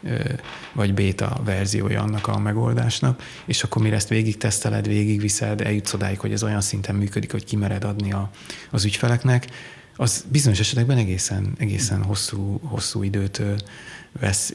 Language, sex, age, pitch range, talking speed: Hungarian, male, 30-49, 100-120 Hz, 145 wpm